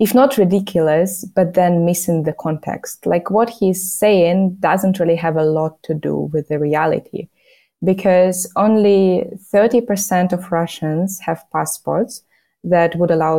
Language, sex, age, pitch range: English, female, 20-39, 155-190 Hz